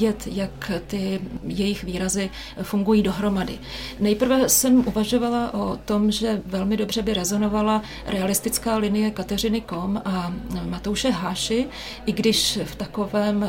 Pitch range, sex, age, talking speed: 195-215 Hz, female, 30-49, 120 wpm